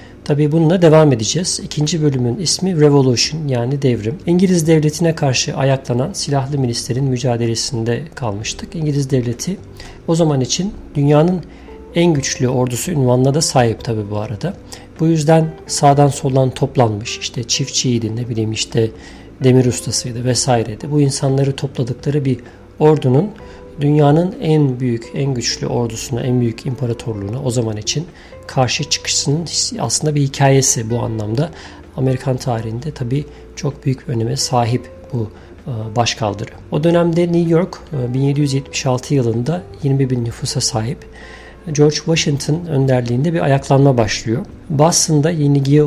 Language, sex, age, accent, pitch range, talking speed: Turkish, male, 50-69, native, 120-150 Hz, 125 wpm